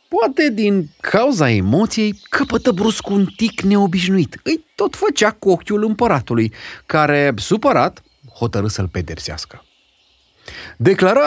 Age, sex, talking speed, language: 30-49, male, 110 wpm, Romanian